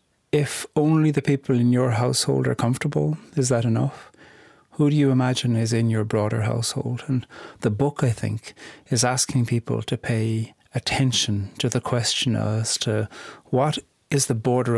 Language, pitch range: English, 110-135 Hz